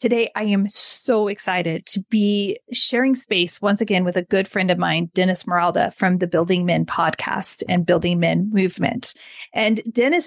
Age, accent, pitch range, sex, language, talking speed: 30-49, American, 185-230 Hz, female, English, 175 wpm